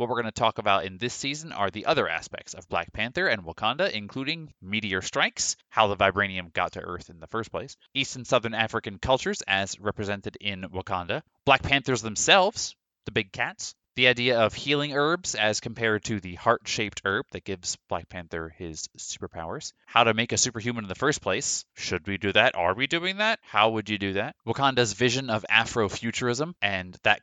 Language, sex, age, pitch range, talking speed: English, male, 20-39, 95-120 Hz, 200 wpm